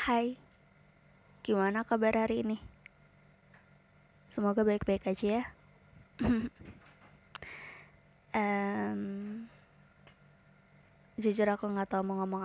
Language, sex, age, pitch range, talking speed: Indonesian, female, 20-39, 180-215 Hz, 75 wpm